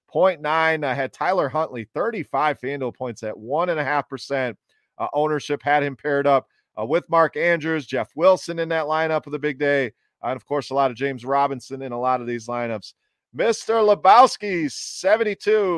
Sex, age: male, 40-59